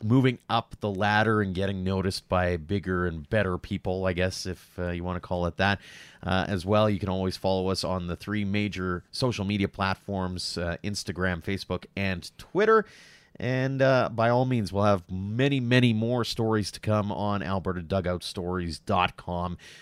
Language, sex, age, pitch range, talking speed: English, male, 30-49, 85-110 Hz, 175 wpm